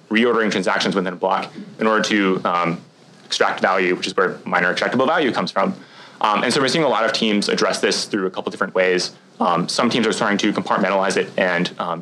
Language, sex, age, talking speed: English, male, 20-39, 225 wpm